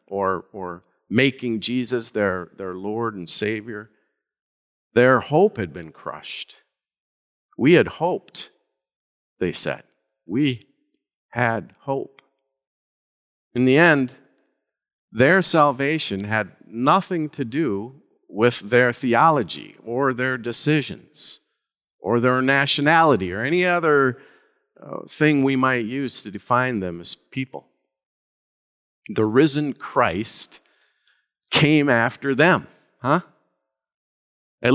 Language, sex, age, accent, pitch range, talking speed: English, male, 50-69, American, 105-135 Hz, 105 wpm